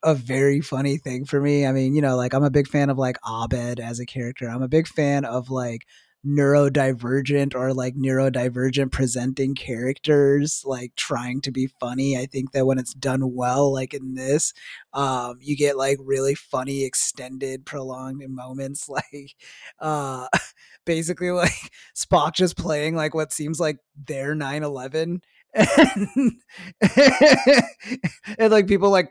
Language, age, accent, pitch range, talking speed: English, 20-39, American, 135-190 Hz, 155 wpm